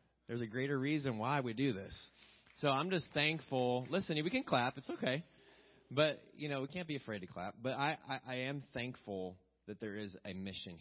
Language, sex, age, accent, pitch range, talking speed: English, male, 30-49, American, 105-135 Hz, 210 wpm